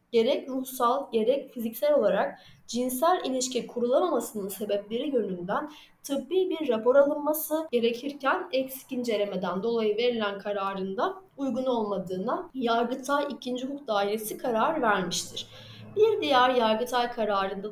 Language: Turkish